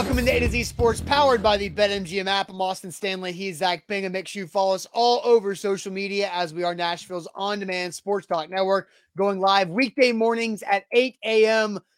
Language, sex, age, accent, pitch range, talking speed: English, male, 30-49, American, 195-230 Hz, 210 wpm